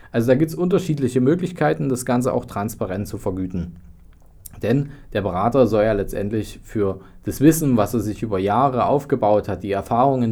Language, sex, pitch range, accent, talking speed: German, male, 95-125 Hz, German, 175 wpm